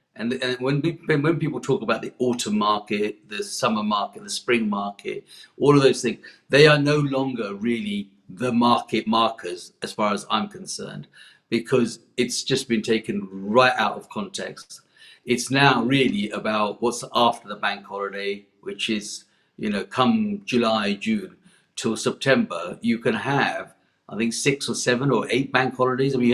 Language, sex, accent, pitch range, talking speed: English, male, British, 110-145 Hz, 170 wpm